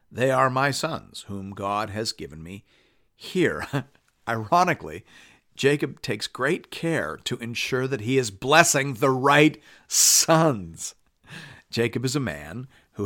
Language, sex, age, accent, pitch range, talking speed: English, male, 50-69, American, 105-135 Hz, 135 wpm